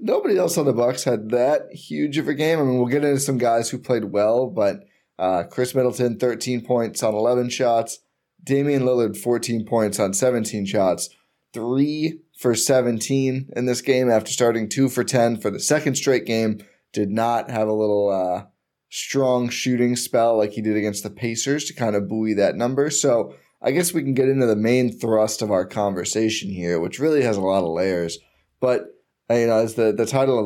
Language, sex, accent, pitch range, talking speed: English, male, American, 110-135 Hz, 205 wpm